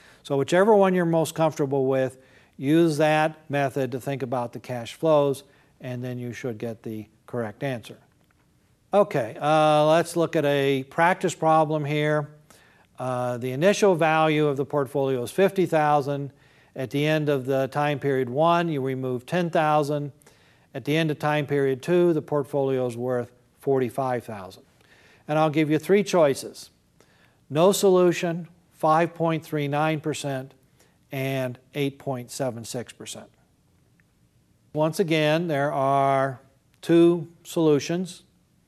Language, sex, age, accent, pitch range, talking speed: English, male, 50-69, American, 135-165 Hz, 140 wpm